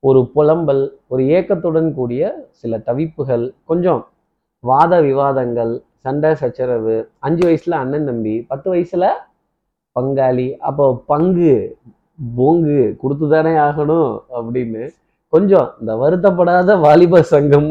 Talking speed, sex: 100 wpm, male